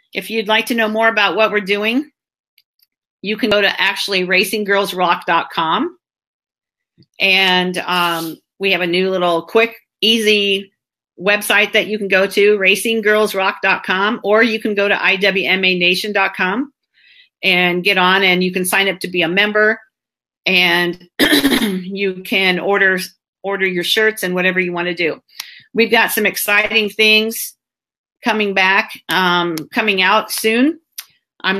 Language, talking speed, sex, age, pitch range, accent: English, 140 wpm, female, 40-59, 180-215 Hz, American